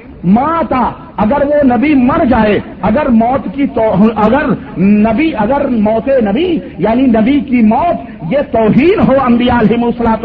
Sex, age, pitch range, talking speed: male, 50-69, 220-285 Hz, 145 wpm